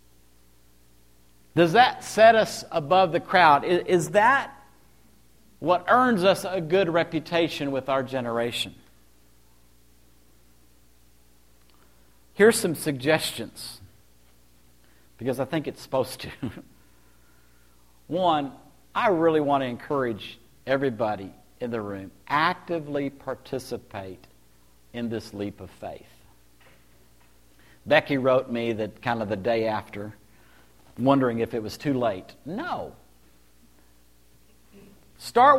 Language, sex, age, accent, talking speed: English, male, 50-69, American, 105 wpm